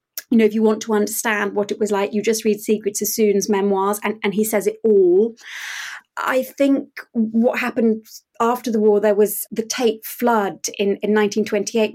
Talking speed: 190 wpm